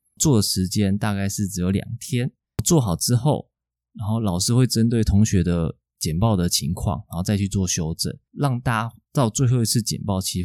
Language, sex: Chinese, male